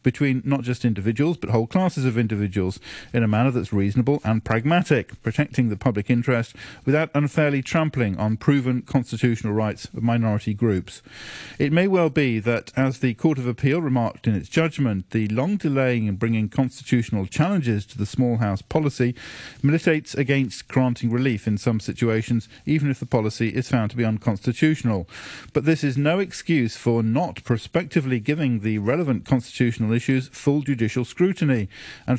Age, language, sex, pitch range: 50-69, English, male, 110-140 Hz